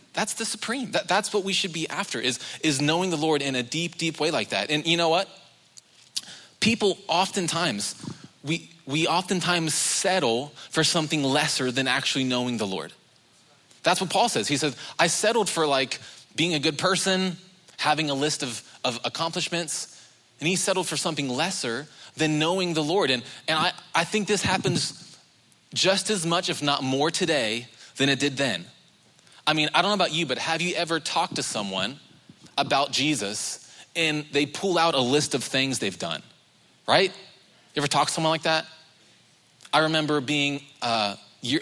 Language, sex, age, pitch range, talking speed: English, male, 20-39, 135-170 Hz, 180 wpm